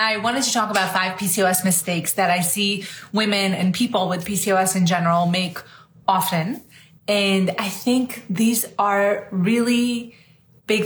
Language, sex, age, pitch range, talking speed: English, female, 30-49, 180-220 Hz, 150 wpm